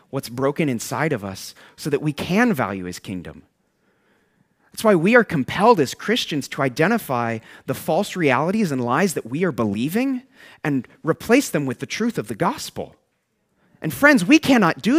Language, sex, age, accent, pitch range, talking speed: English, male, 30-49, American, 135-195 Hz, 175 wpm